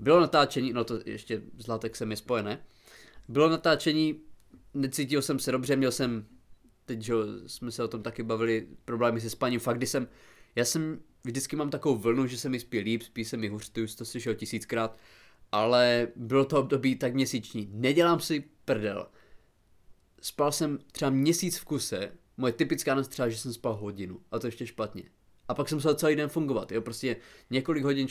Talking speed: 185 wpm